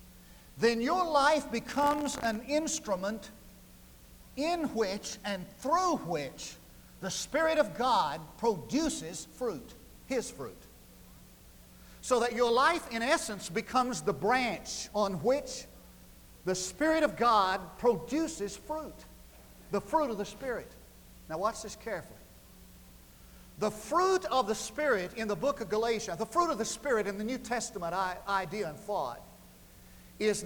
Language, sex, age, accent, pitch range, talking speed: English, male, 50-69, American, 200-285 Hz, 135 wpm